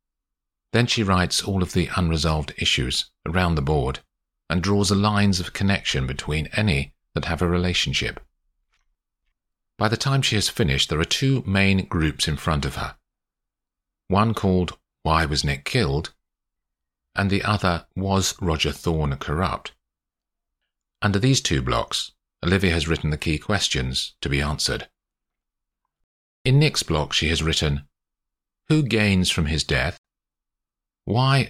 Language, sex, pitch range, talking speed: English, male, 70-95 Hz, 145 wpm